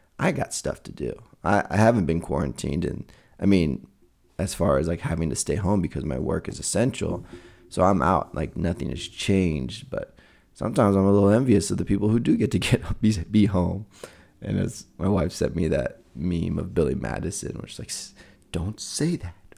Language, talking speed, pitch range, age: English, 205 wpm, 85-105 Hz, 20-39